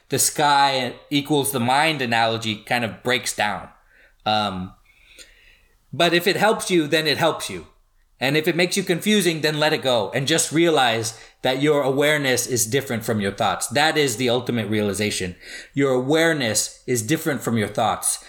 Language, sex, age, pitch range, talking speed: English, male, 30-49, 115-160 Hz, 175 wpm